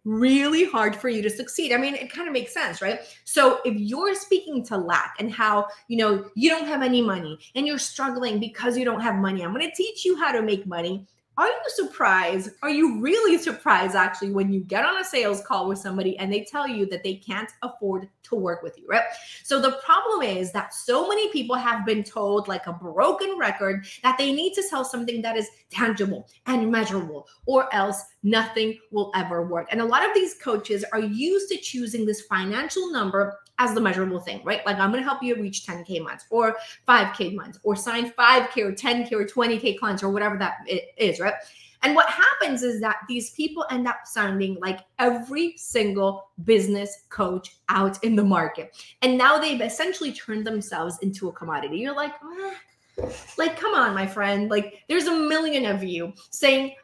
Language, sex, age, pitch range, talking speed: English, female, 30-49, 200-280 Hz, 205 wpm